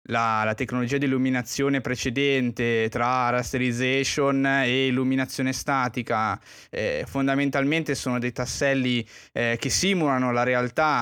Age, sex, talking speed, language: 20-39, male, 115 wpm, Italian